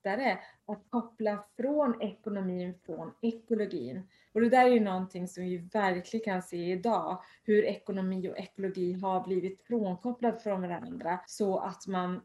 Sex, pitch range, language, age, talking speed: female, 180-210 Hz, Swedish, 30-49, 145 wpm